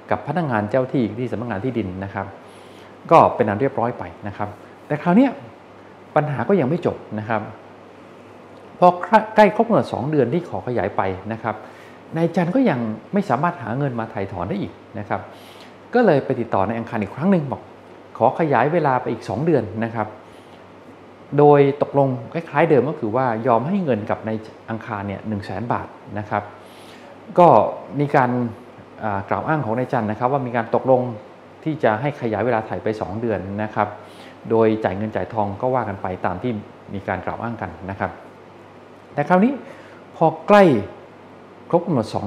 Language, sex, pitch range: English, male, 105-145 Hz